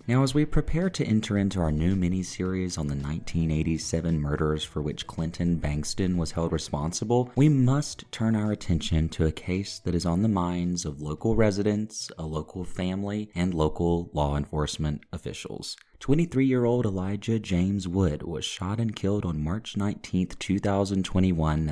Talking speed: 155 wpm